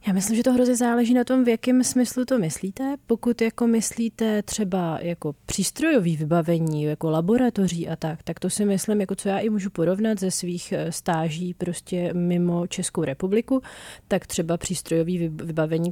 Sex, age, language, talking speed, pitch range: female, 30-49, Czech, 170 wpm, 170-195 Hz